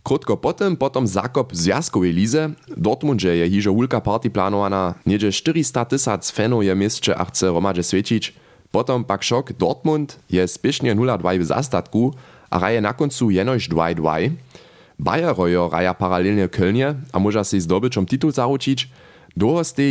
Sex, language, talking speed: male, German, 150 wpm